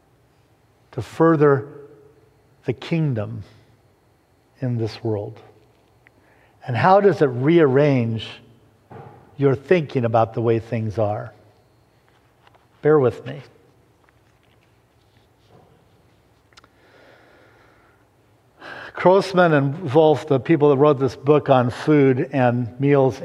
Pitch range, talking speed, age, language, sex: 115-155 Hz, 90 wpm, 50-69, English, male